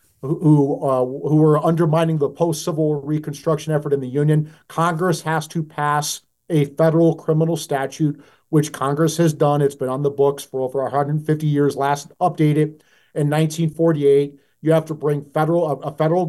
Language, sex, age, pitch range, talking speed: English, male, 40-59, 145-165 Hz, 160 wpm